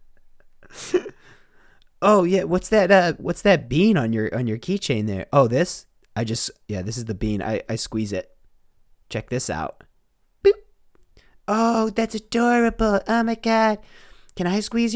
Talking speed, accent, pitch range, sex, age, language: 155 wpm, American, 115-180 Hz, male, 20-39, English